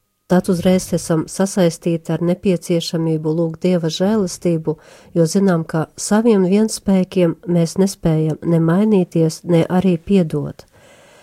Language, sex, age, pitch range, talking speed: English, female, 40-59, 165-195 Hz, 105 wpm